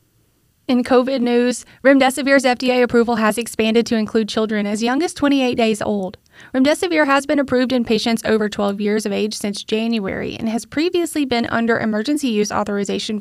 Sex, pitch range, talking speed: female, 210-275 Hz, 175 wpm